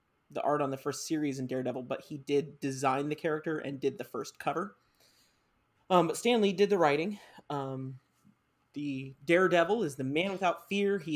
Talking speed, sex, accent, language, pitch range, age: 175 wpm, male, American, English, 140-165 Hz, 30-49